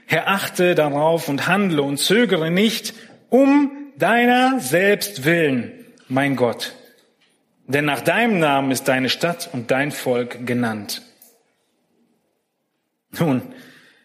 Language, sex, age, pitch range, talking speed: German, male, 40-59, 160-230 Hz, 110 wpm